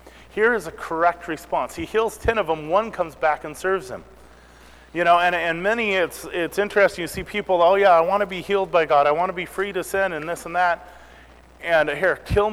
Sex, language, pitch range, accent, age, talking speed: male, English, 150-200 Hz, American, 30-49, 240 wpm